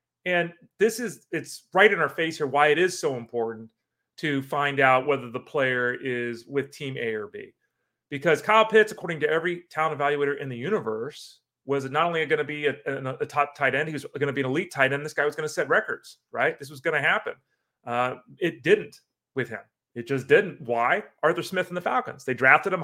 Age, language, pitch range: 30-49, English, 140-195 Hz